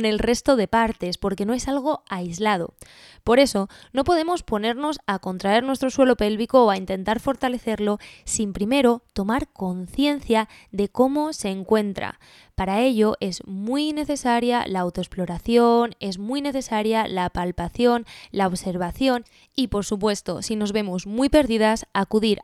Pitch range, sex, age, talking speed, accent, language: 200-260 Hz, female, 20-39, 145 wpm, Spanish, Spanish